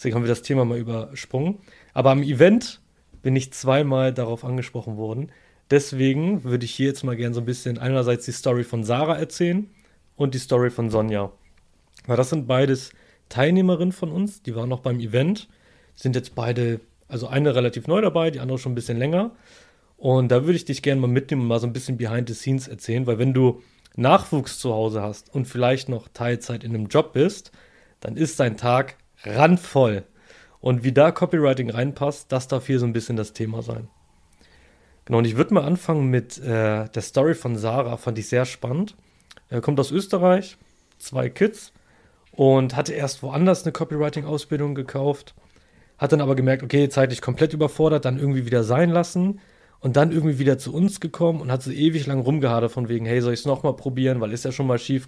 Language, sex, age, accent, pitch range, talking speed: German, male, 30-49, German, 120-150 Hz, 200 wpm